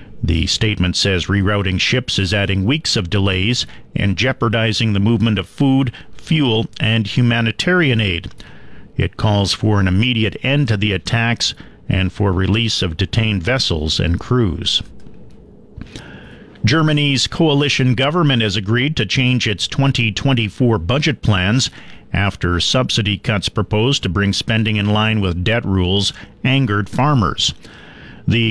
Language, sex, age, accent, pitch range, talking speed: English, male, 50-69, American, 100-120 Hz, 135 wpm